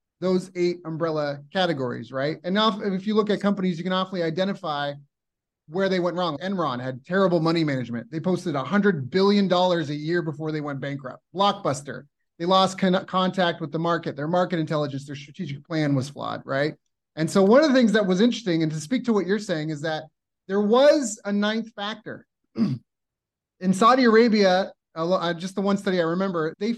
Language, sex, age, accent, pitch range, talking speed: English, male, 30-49, American, 165-210 Hz, 195 wpm